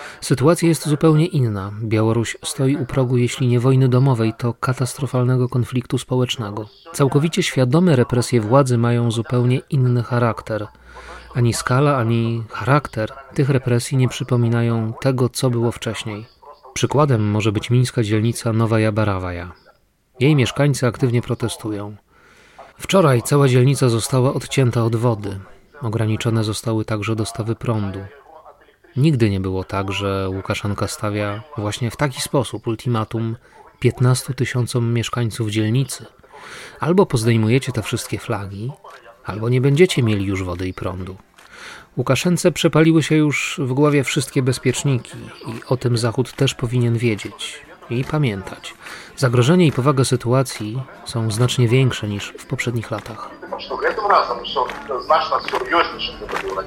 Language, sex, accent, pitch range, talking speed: Polish, male, native, 110-135 Hz, 125 wpm